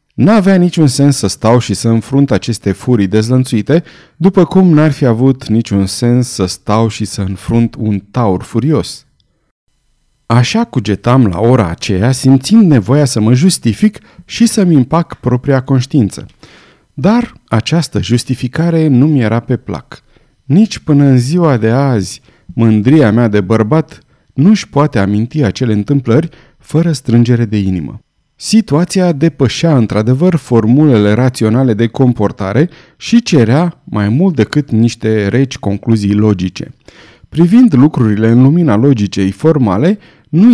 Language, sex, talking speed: Romanian, male, 135 wpm